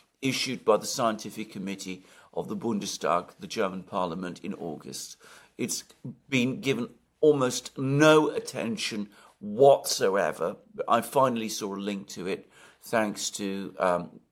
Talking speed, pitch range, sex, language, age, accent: 125 wpm, 100-145 Hz, male, English, 50-69, British